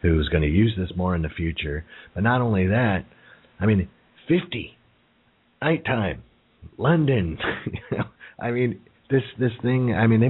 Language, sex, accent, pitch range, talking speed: English, male, American, 80-105 Hz, 165 wpm